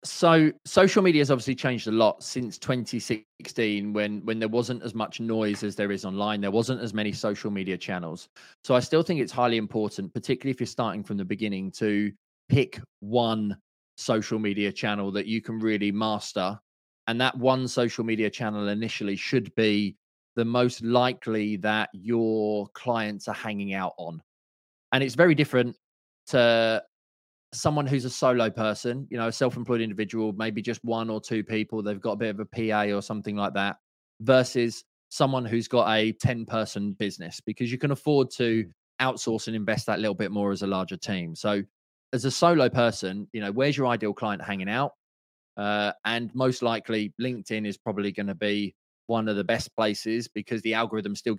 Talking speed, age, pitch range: 190 wpm, 20-39, 105-120 Hz